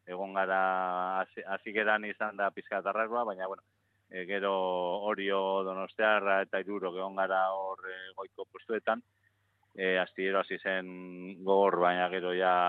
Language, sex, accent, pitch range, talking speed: Spanish, male, Spanish, 90-105 Hz, 125 wpm